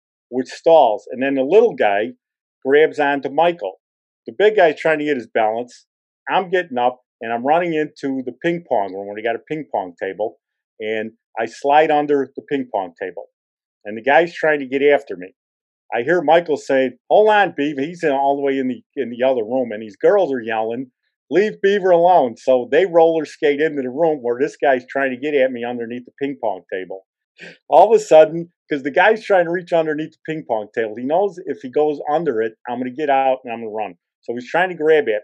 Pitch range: 125-165 Hz